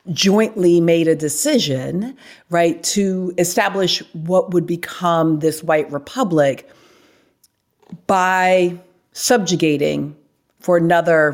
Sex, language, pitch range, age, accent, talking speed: female, English, 155-195 Hz, 40-59, American, 90 wpm